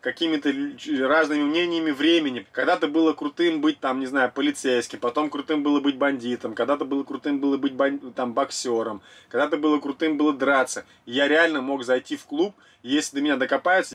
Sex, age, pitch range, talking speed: male, 20-39, 145-200 Hz, 170 wpm